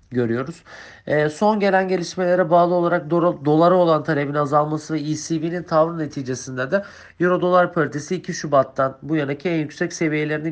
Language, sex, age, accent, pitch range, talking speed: Turkish, male, 40-59, native, 145-175 Hz, 150 wpm